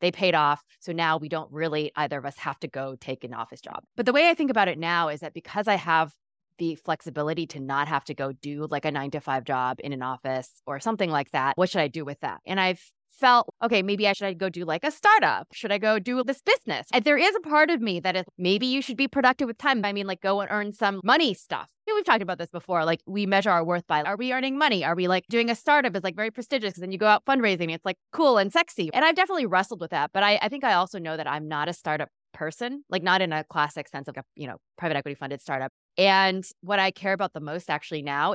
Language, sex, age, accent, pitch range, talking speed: English, female, 20-39, American, 155-210 Hz, 285 wpm